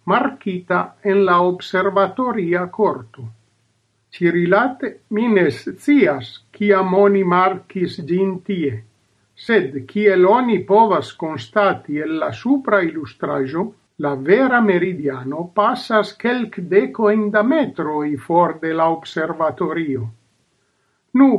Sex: male